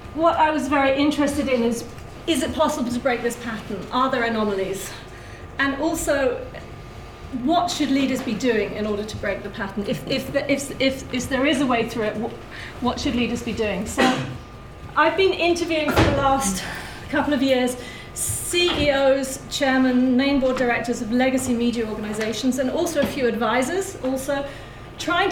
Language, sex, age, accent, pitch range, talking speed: English, female, 40-59, British, 225-280 Hz, 180 wpm